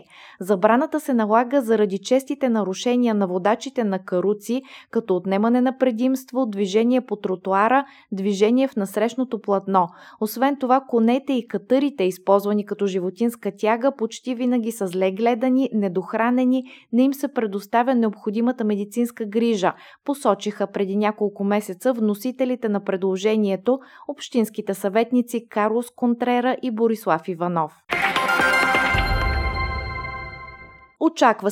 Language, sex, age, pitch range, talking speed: Bulgarian, female, 20-39, 200-245 Hz, 110 wpm